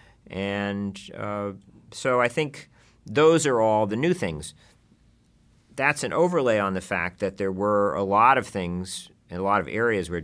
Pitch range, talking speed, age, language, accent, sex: 85-100 Hz, 175 wpm, 50-69, English, American, male